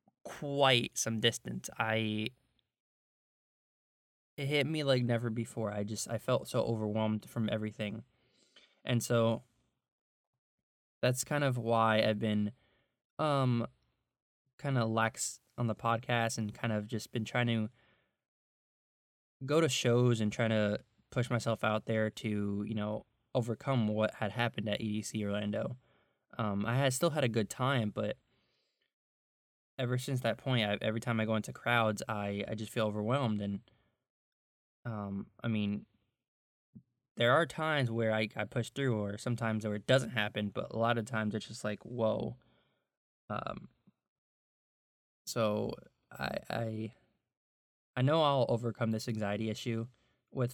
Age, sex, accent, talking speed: 20-39, male, American, 145 wpm